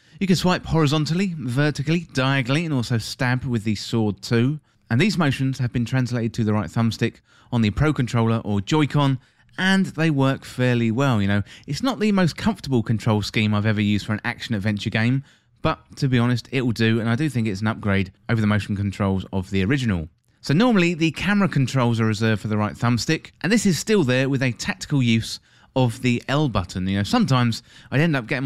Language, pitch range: English, 110-145 Hz